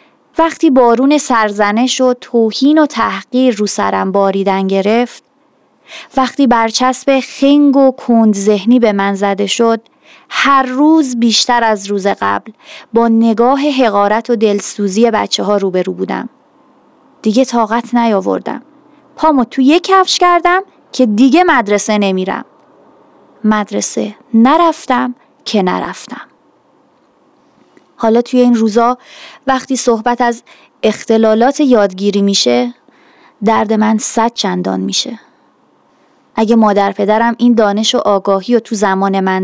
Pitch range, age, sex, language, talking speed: 210-265 Hz, 30-49, female, Persian, 120 wpm